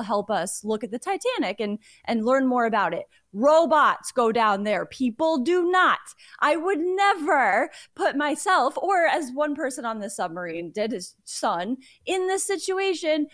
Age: 20-39